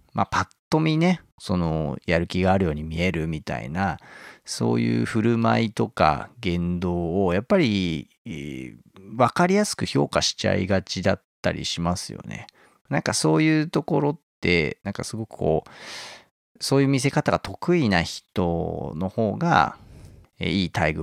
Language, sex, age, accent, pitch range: Japanese, male, 40-59, native, 85-125 Hz